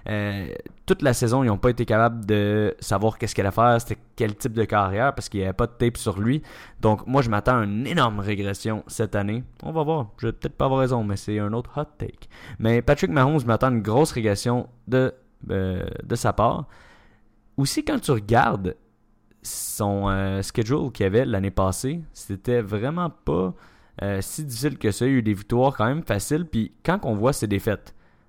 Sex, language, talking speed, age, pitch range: male, French, 215 wpm, 20-39, 105-120 Hz